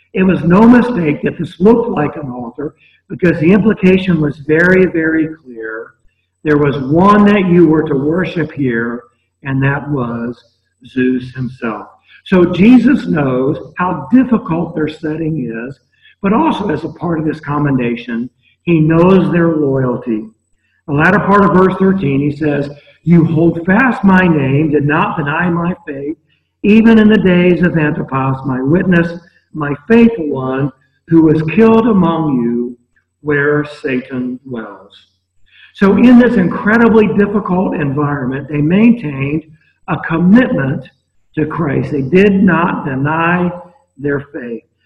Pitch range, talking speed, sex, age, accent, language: 135-185 Hz, 140 wpm, male, 60-79, American, English